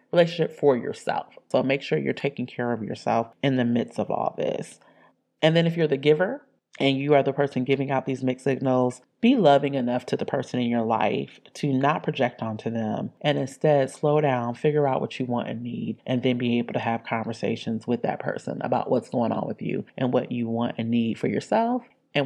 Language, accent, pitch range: English, American, 125-170 Hz